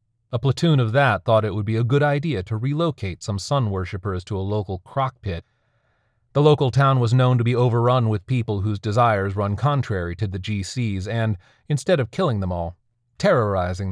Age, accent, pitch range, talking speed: 30-49, American, 100-120 Hz, 190 wpm